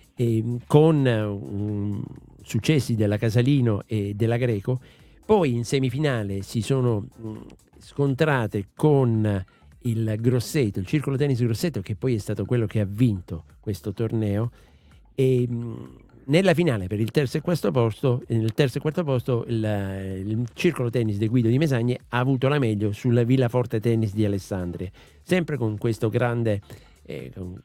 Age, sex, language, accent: 50-69, male, Italian, native